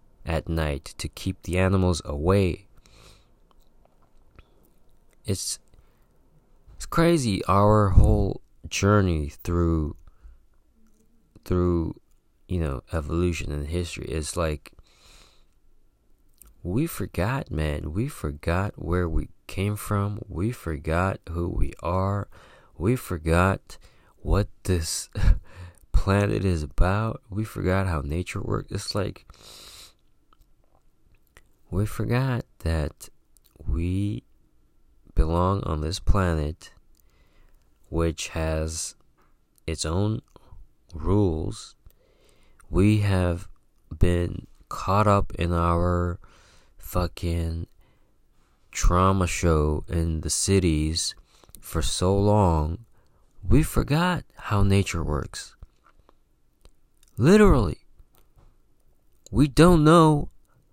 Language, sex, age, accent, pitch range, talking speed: English, male, 30-49, American, 80-100 Hz, 85 wpm